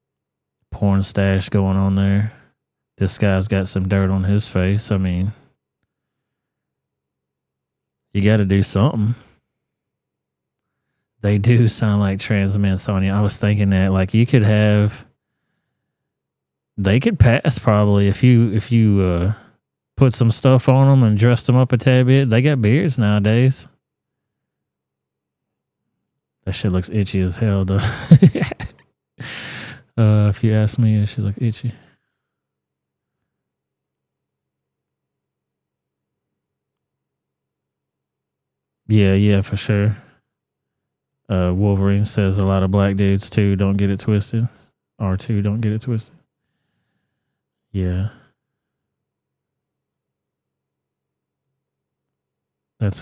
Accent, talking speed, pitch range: American, 115 wpm, 95-110 Hz